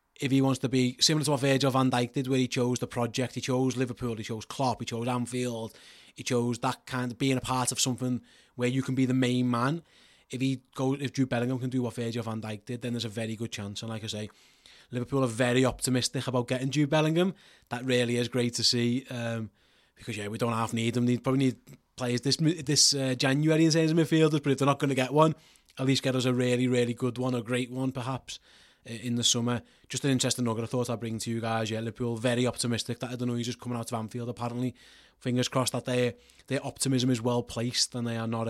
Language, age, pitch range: English, 20-39, 115-135 Hz